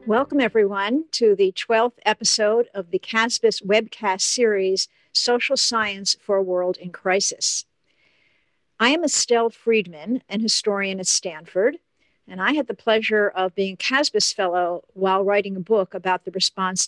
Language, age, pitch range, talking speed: English, 50-69, 185-230 Hz, 155 wpm